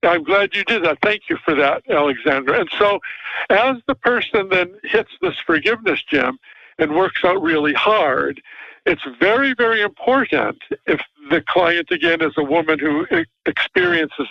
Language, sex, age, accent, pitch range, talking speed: English, male, 60-79, American, 165-250 Hz, 160 wpm